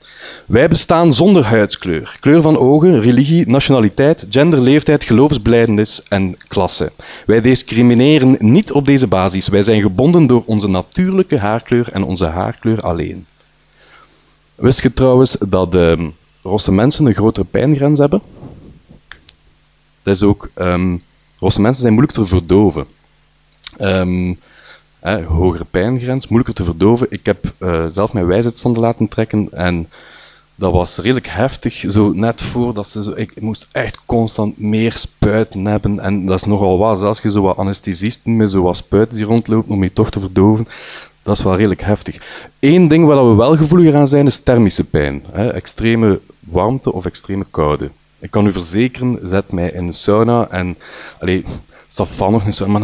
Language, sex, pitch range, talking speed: Dutch, male, 95-125 Hz, 165 wpm